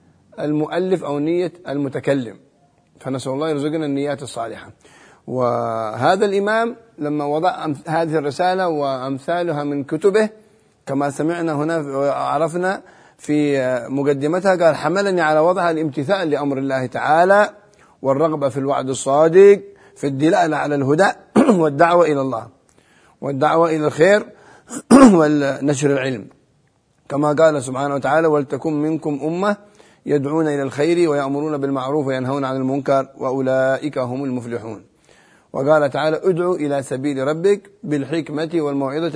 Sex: male